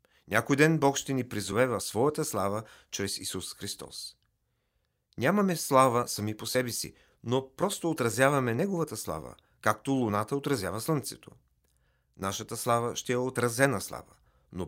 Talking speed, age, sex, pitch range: 135 wpm, 40-59, male, 95-130 Hz